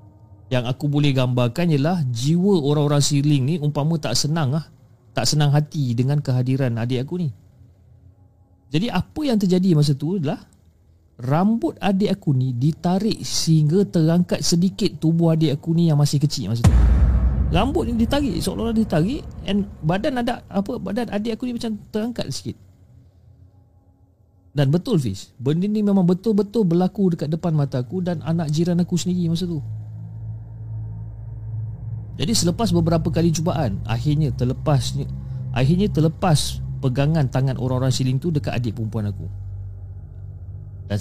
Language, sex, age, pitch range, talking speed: Malay, male, 40-59, 110-160 Hz, 145 wpm